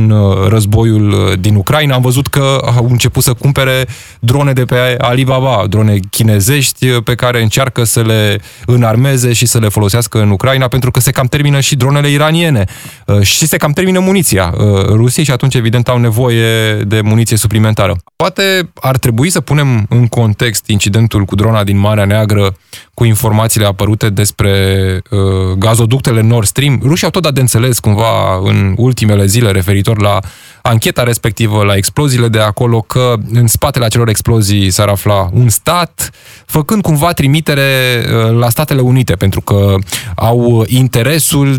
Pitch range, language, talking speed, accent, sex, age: 105-130 Hz, Romanian, 155 wpm, native, male, 20-39